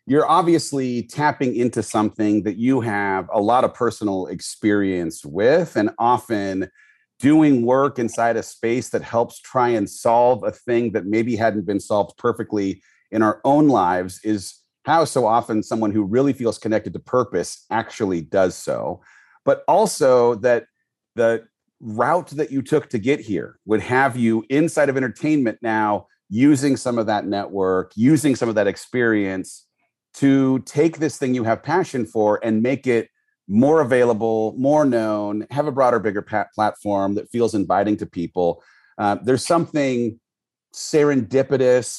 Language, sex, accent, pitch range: English, male, American, 105-135 Hz